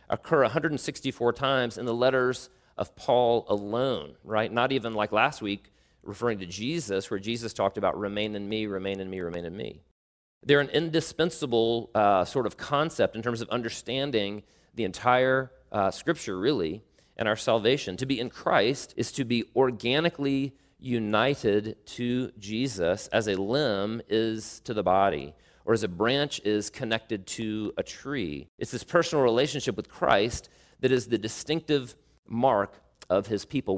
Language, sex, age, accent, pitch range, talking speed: English, male, 40-59, American, 100-130 Hz, 160 wpm